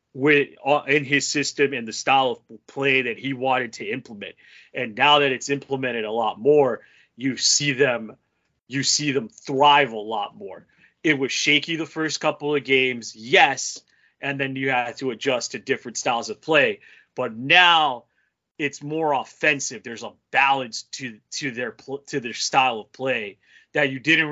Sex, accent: male, American